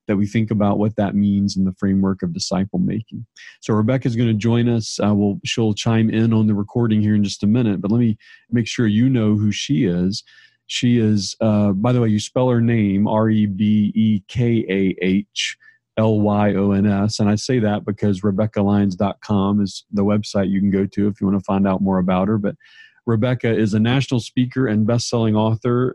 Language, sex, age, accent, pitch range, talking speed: English, male, 40-59, American, 100-115 Hz, 195 wpm